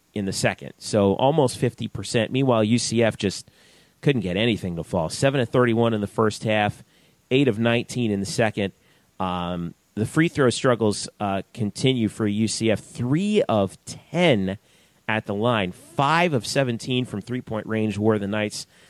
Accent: American